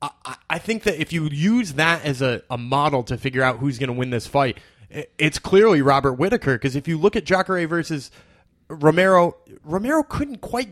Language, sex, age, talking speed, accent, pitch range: English, male, 20-39, 190 wpm, American, 140-185 Hz